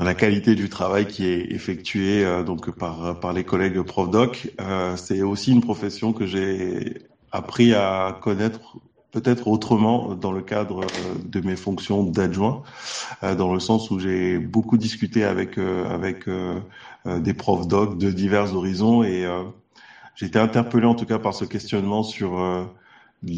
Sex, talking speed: male, 160 wpm